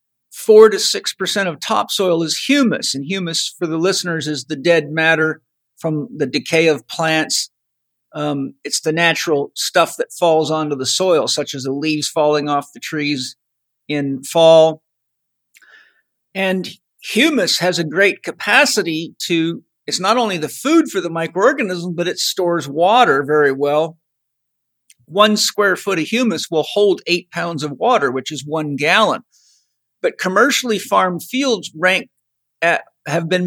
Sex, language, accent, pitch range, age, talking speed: male, English, American, 155-210 Hz, 50-69, 150 wpm